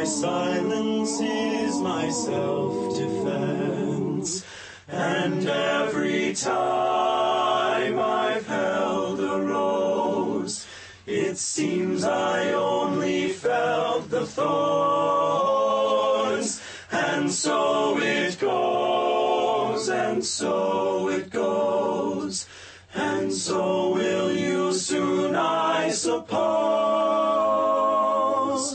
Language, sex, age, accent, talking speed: English, male, 30-49, American, 70 wpm